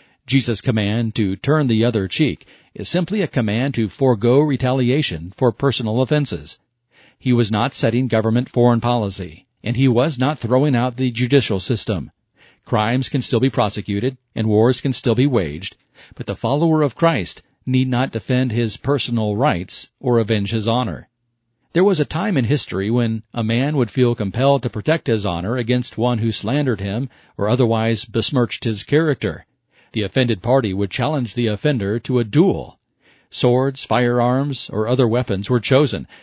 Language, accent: English, American